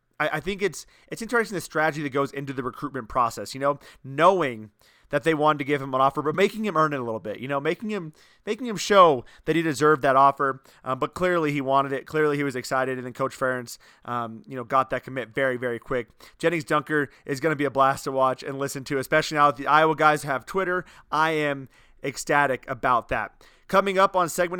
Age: 30-49